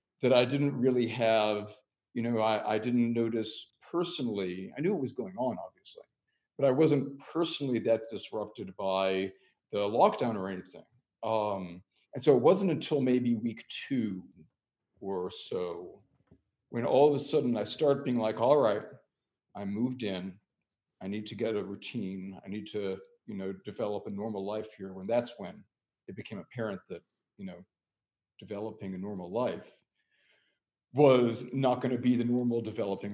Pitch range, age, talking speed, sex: 100-125 Hz, 50-69, 165 wpm, male